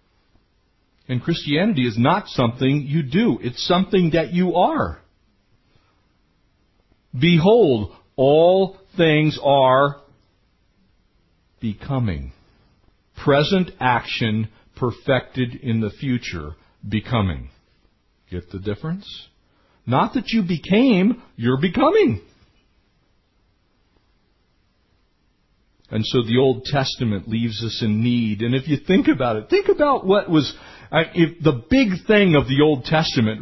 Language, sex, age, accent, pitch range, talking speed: English, male, 50-69, American, 120-185 Hz, 105 wpm